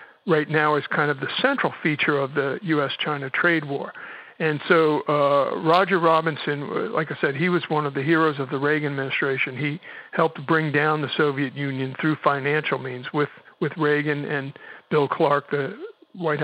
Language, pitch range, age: English, 145-160 Hz, 50-69